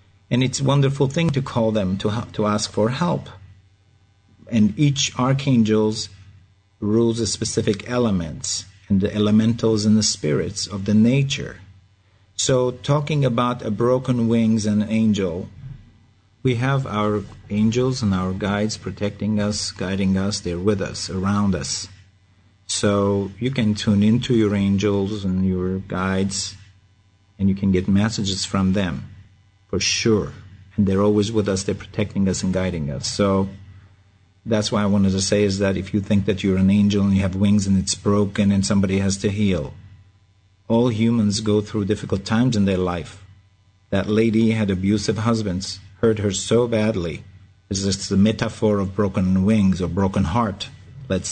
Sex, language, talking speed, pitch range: male, English, 165 wpm, 95-110 Hz